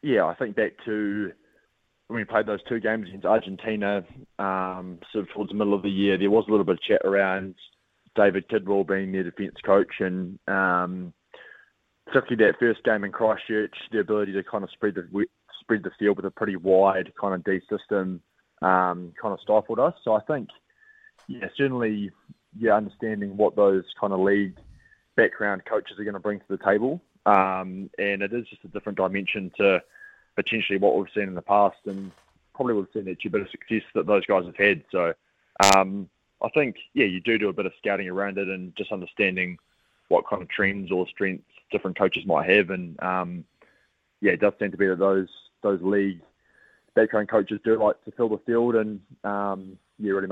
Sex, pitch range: male, 95-105 Hz